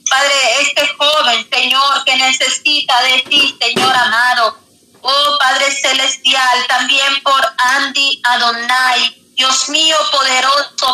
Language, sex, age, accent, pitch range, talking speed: Spanish, female, 40-59, American, 255-285 Hz, 110 wpm